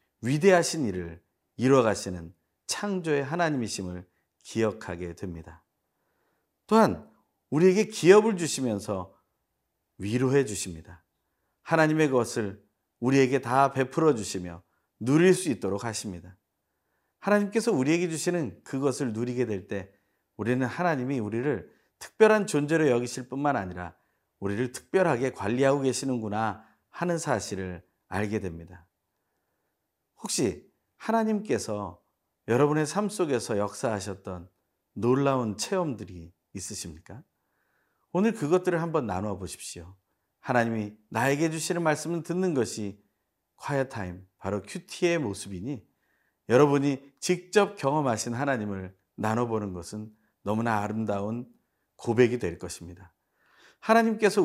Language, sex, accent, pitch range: Korean, male, native, 95-145 Hz